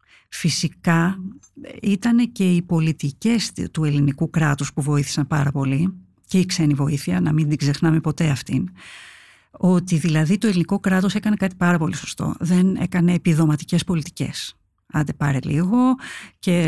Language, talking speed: Greek, 145 wpm